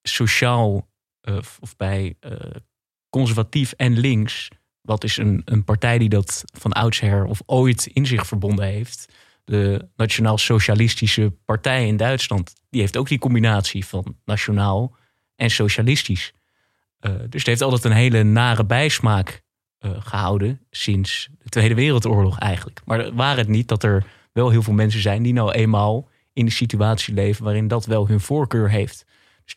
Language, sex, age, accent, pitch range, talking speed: Dutch, male, 20-39, Dutch, 105-120 Hz, 160 wpm